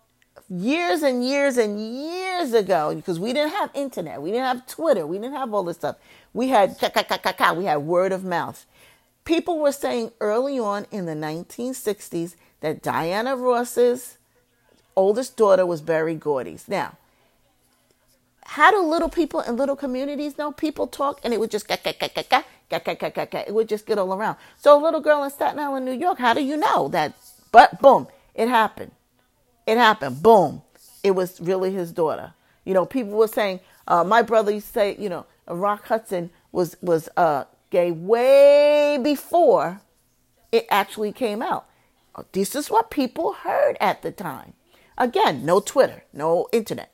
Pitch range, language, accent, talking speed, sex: 200-280 Hz, English, American, 165 wpm, female